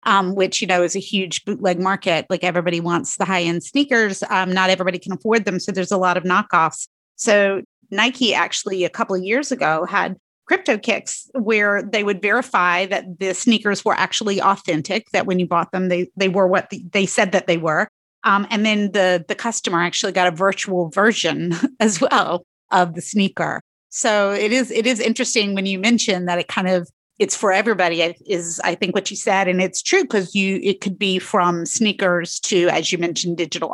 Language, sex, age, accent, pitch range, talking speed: English, female, 30-49, American, 180-215 Hz, 205 wpm